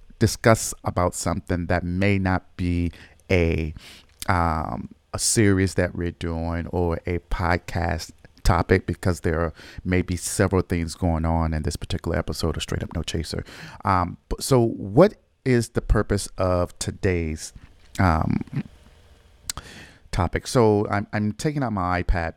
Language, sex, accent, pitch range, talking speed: English, male, American, 85-100 Hz, 140 wpm